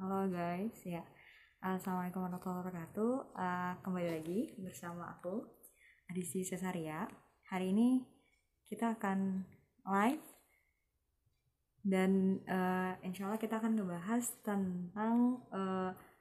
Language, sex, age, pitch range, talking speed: Indonesian, female, 20-39, 185-220 Hz, 100 wpm